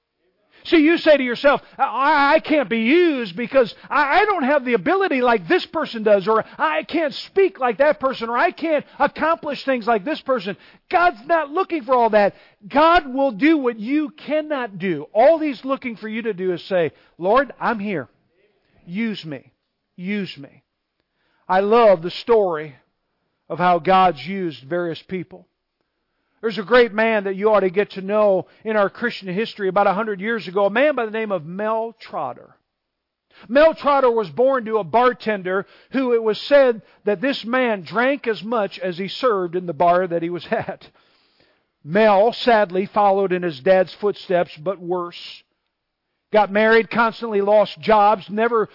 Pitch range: 190-265 Hz